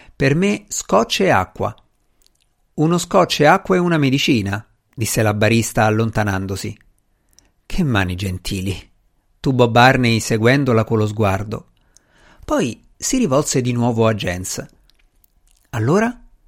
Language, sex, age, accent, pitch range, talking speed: Italian, male, 50-69, native, 105-140 Hz, 115 wpm